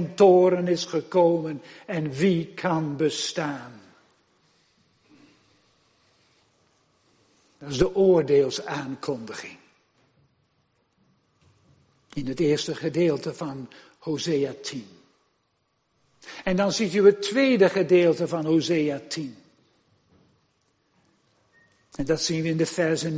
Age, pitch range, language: 60-79, 165-205 Hz, Dutch